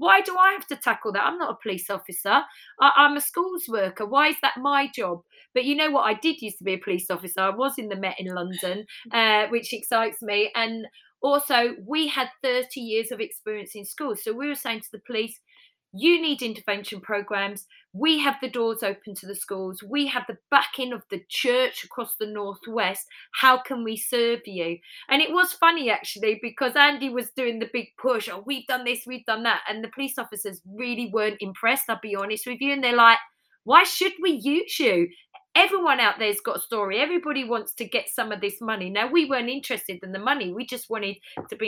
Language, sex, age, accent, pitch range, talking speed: English, female, 30-49, British, 210-260 Hz, 220 wpm